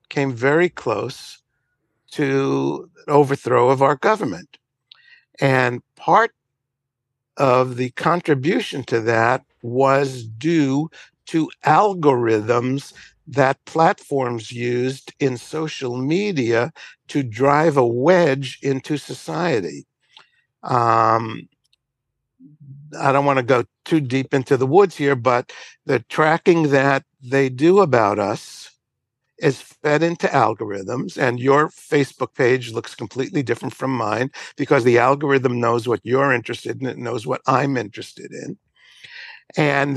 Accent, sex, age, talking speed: American, male, 60-79, 120 wpm